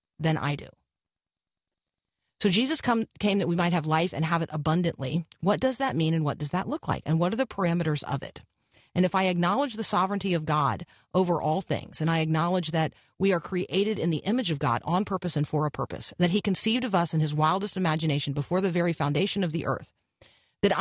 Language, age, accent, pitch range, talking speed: English, 40-59, American, 155-205 Hz, 225 wpm